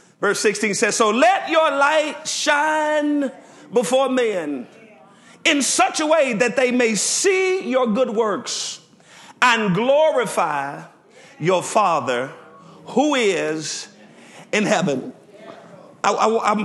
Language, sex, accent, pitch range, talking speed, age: English, male, American, 155-240 Hz, 110 wpm, 40-59